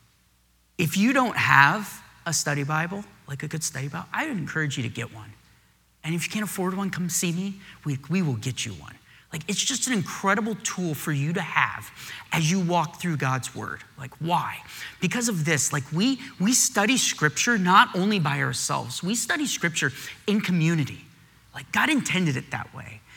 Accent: American